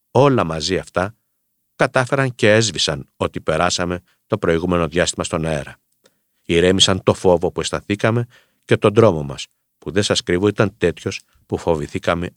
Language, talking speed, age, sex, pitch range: Greek, 145 wpm, 50-69, male, 80-110 Hz